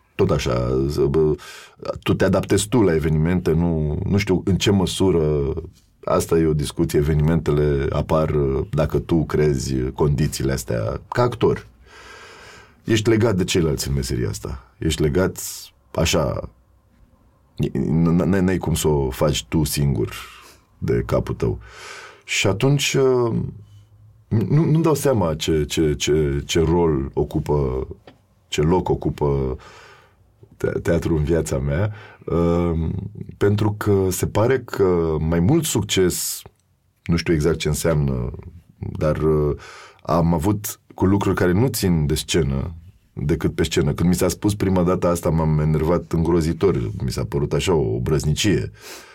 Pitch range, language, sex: 75-100 Hz, Romanian, male